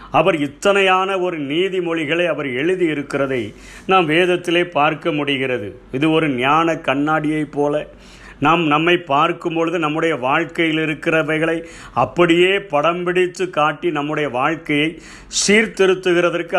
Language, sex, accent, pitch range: Tamil, male, native, 150-180 Hz